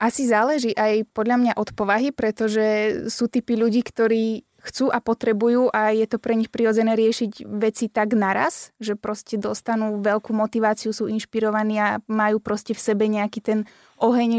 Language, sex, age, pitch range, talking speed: Slovak, female, 20-39, 215-225 Hz, 165 wpm